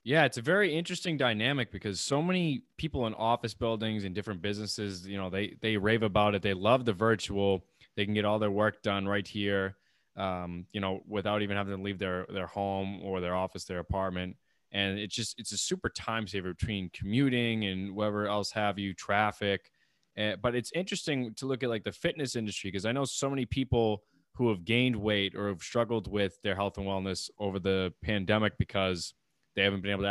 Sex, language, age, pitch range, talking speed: male, English, 20-39, 95-115 Hz, 210 wpm